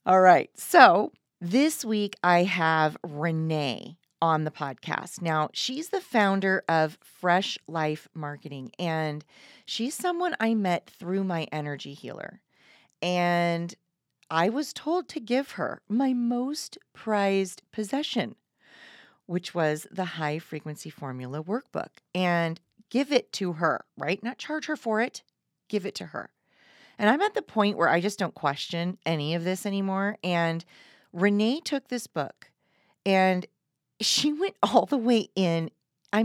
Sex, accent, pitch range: female, American, 165-225 Hz